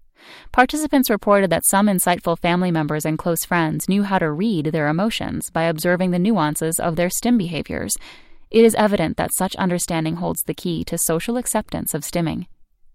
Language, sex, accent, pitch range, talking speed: English, female, American, 160-195 Hz, 175 wpm